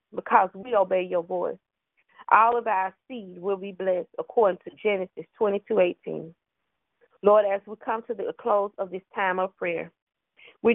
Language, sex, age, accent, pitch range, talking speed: English, female, 30-49, American, 185-225 Hz, 160 wpm